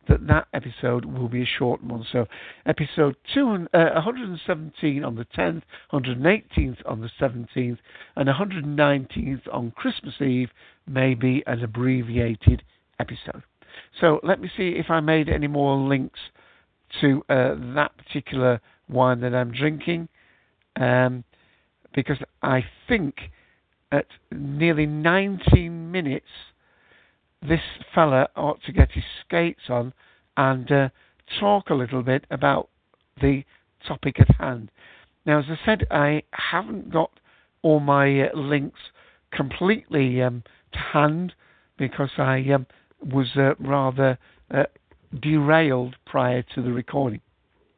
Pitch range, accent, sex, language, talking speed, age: 125-155 Hz, British, male, English, 125 wpm, 60-79